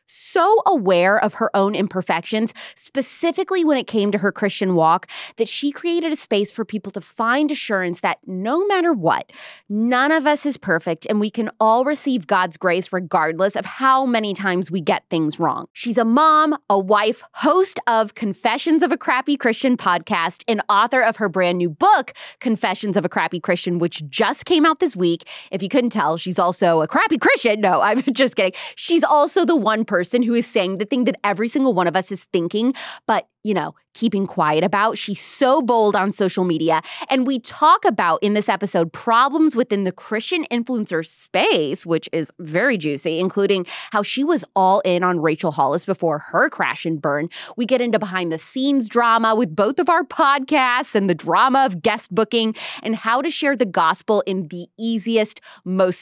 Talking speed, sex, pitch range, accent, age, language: 195 wpm, female, 185-265 Hz, American, 20-39, English